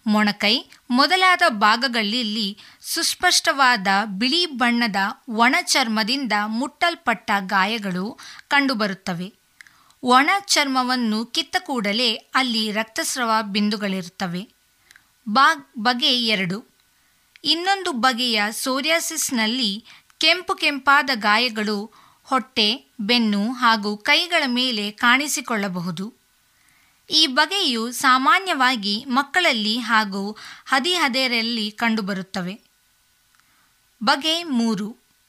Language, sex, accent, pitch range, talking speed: Kannada, female, native, 210-285 Hz, 65 wpm